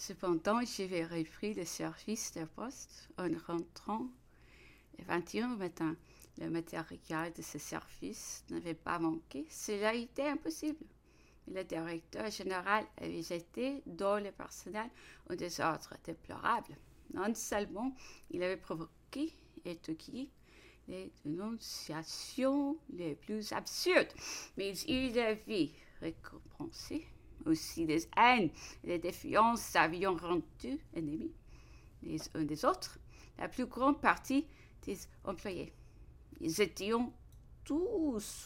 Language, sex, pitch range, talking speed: English, female, 165-250 Hz, 115 wpm